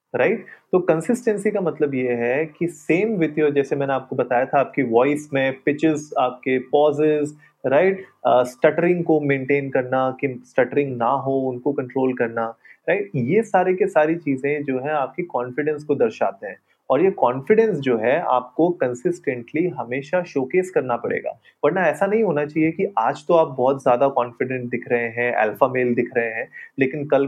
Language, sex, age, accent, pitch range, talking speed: Hindi, male, 30-49, native, 125-170 Hz, 175 wpm